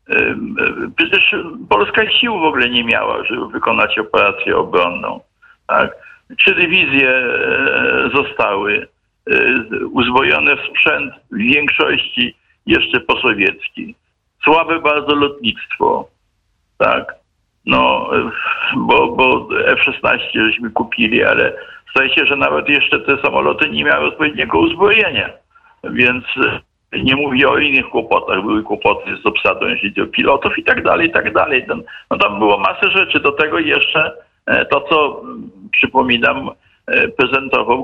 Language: Polish